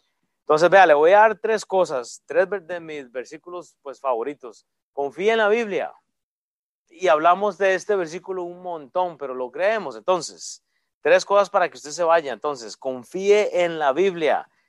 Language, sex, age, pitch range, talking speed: Spanish, male, 30-49, 145-190 Hz, 170 wpm